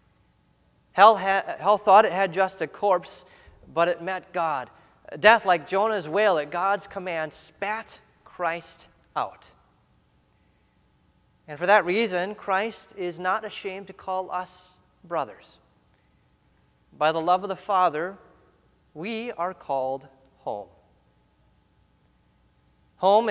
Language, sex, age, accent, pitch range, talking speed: English, male, 30-49, American, 160-200 Hz, 115 wpm